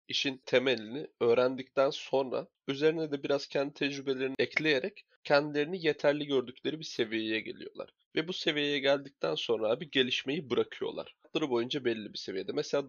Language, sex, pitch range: Turkish, male, 130-155 Hz